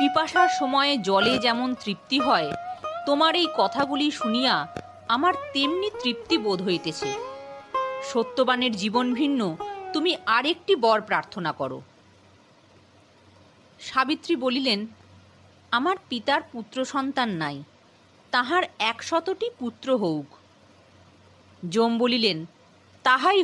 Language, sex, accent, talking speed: Bengali, female, native, 80 wpm